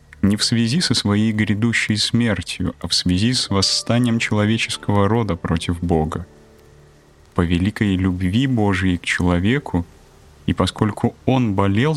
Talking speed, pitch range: 130 wpm, 85-115 Hz